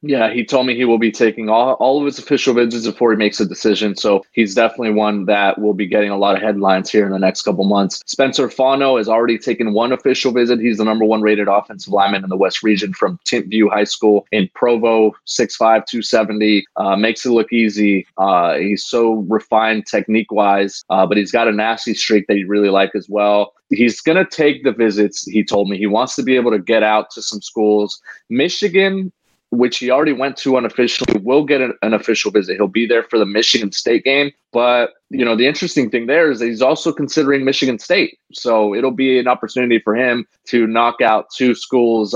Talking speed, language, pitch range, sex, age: 220 wpm, English, 105-125 Hz, male, 20-39